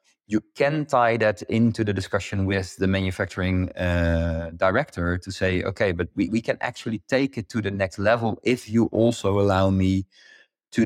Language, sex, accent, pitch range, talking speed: English, male, Dutch, 95-115 Hz, 175 wpm